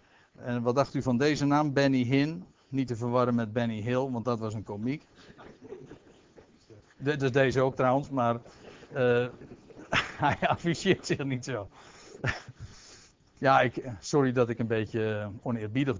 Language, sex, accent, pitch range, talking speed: Dutch, male, Dutch, 120-145 Hz, 150 wpm